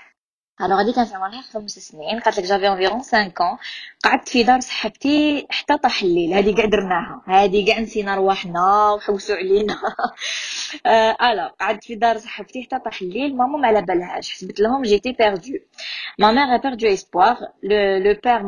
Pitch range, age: 195-245 Hz, 20-39